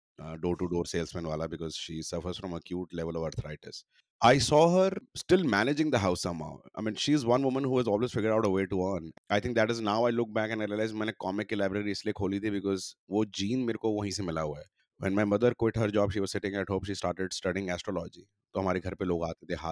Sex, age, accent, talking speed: male, 30-49, native, 80 wpm